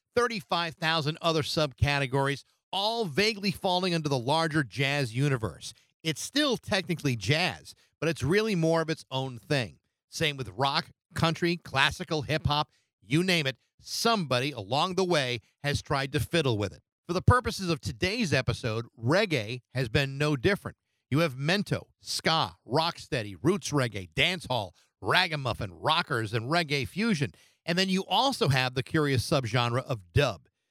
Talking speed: 150 wpm